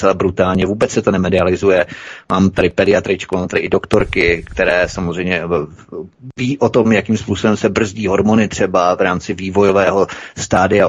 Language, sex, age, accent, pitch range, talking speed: Czech, male, 30-49, native, 95-105 Hz, 150 wpm